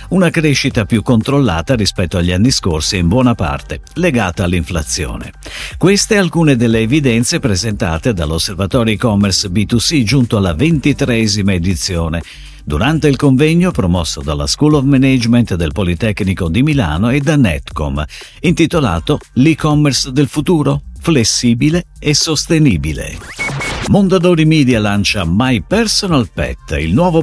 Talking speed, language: 120 wpm, Italian